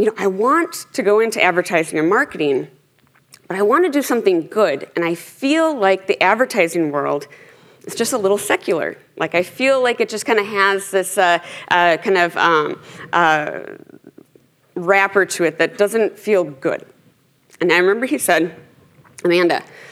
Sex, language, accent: female, English, American